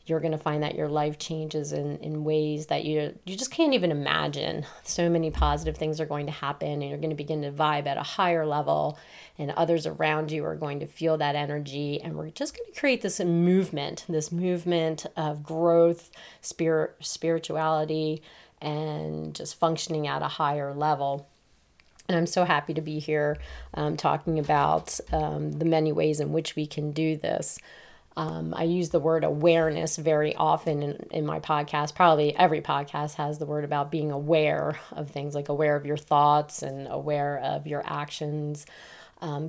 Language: English